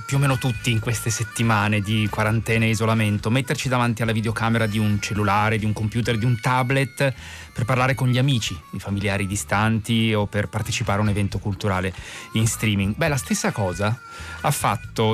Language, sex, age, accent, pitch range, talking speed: Italian, male, 30-49, native, 100-120 Hz, 185 wpm